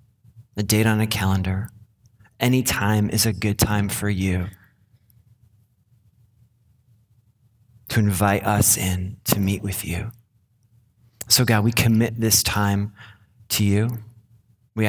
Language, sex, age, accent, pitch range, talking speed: English, male, 30-49, American, 110-125 Hz, 120 wpm